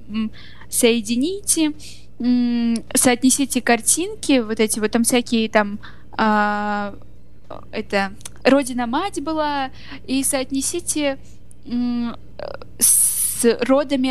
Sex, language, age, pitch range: female, Russian, 10-29, 215-255 Hz